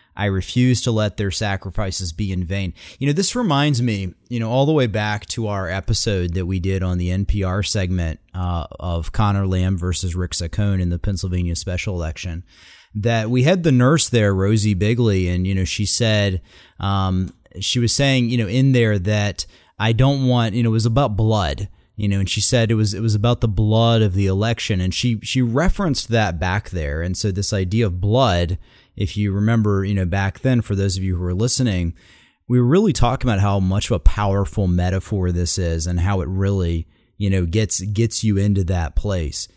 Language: English